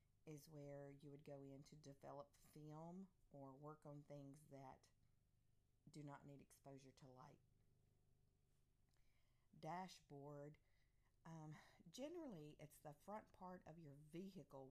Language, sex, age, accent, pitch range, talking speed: English, female, 50-69, American, 130-155 Hz, 120 wpm